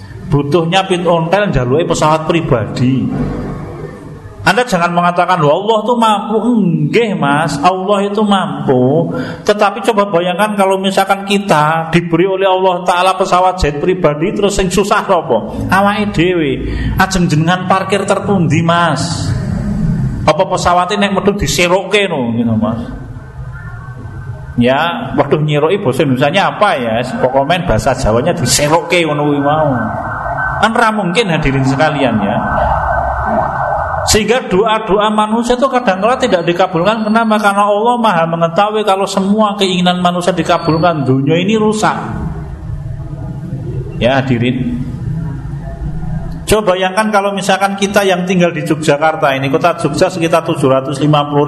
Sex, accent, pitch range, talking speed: male, native, 140-195 Hz, 120 wpm